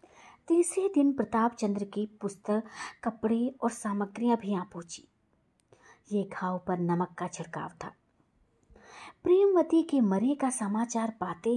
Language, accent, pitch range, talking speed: Hindi, native, 185-255 Hz, 130 wpm